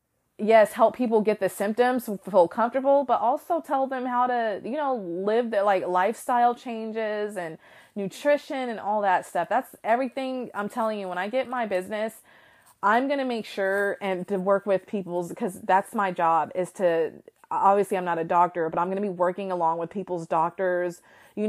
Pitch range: 185-235 Hz